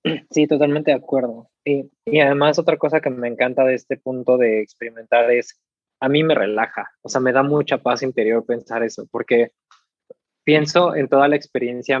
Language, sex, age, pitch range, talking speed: Spanish, male, 20-39, 120-155 Hz, 185 wpm